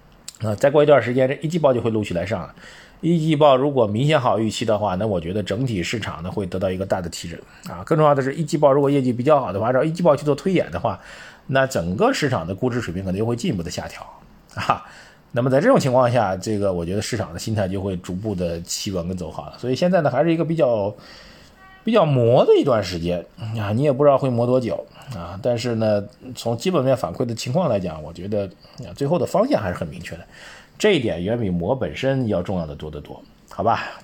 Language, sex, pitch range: Chinese, male, 100-135 Hz